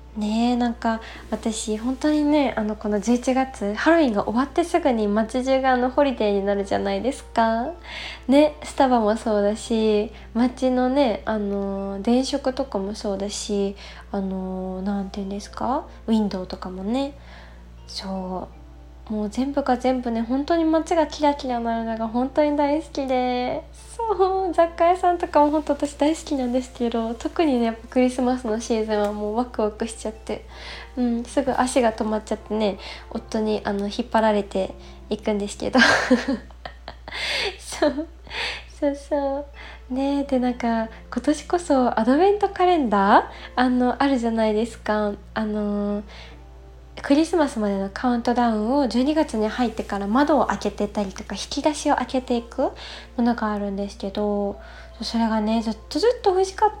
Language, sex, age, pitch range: Japanese, female, 20-39, 210-275 Hz